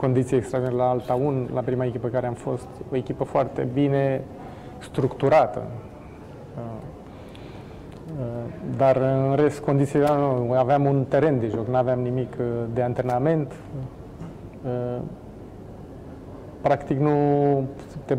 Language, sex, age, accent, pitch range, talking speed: Romanian, male, 30-49, native, 125-140 Hz, 105 wpm